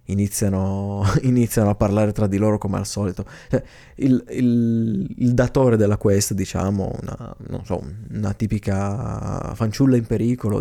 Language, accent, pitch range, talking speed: Italian, native, 100-125 Hz, 140 wpm